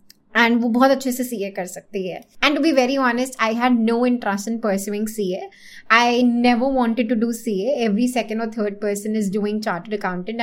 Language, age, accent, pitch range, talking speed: English, 20-39, Indian, 215-255 Hz, 180 wpm